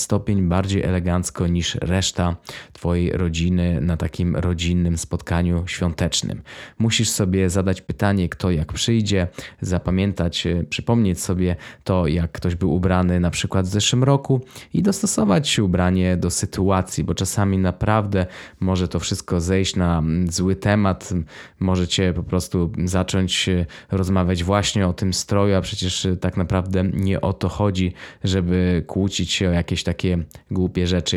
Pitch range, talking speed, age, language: 90-105 Hz, 140 wpm, 20-39, Polish